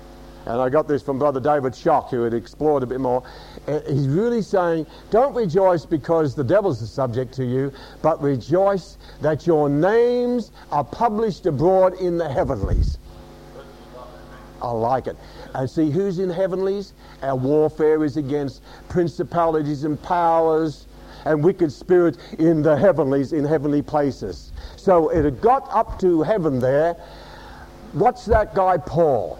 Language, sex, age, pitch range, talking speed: English, male, 60-79, 125-170 Hz, 150 wpm